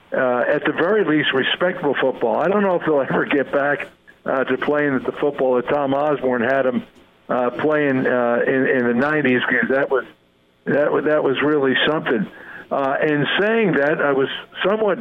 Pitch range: 135-160 Hz